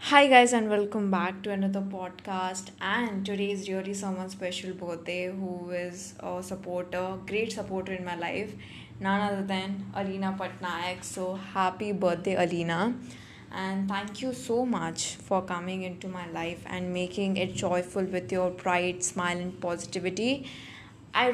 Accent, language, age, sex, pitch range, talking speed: Indian, English, 10-29, female, 185-205 Hz, 150 wpm